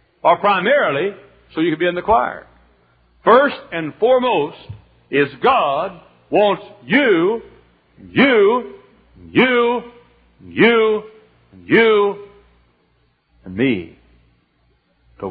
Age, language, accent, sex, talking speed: 60-79, English, American, male, 105 wpm